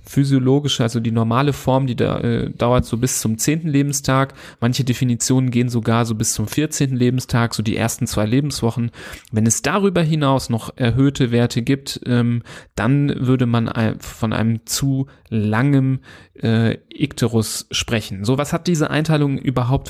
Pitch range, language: 120-140 Hz, German